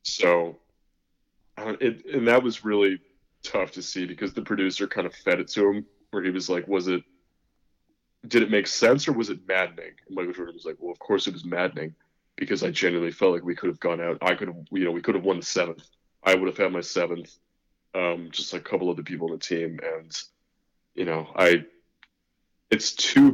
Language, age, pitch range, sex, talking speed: English, 20-39, 85-100 Hz, male, 225 wpm